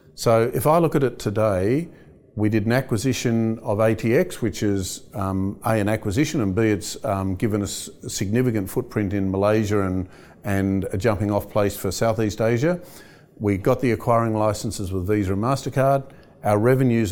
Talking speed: 175 wpm